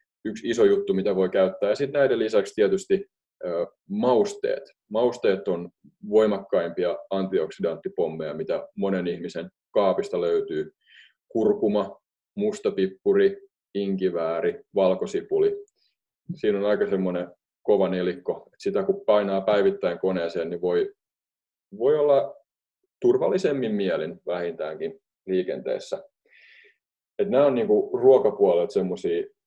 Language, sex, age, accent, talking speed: Finnish, male, 20-39, native, 105 wpm